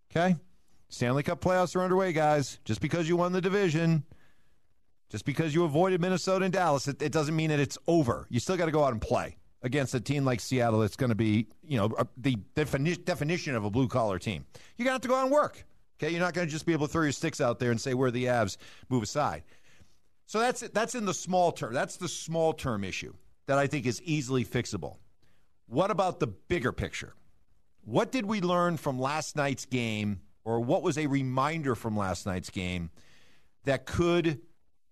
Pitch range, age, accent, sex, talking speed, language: 110-160 Hz, 50-69, American, male, 215 wpm, English